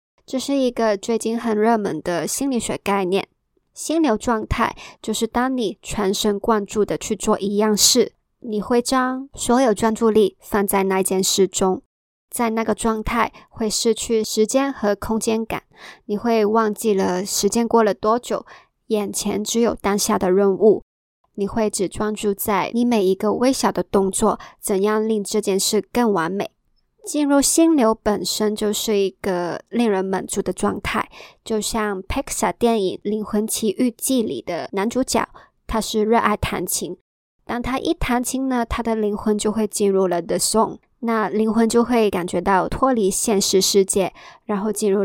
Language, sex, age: Chinese, male, 20-39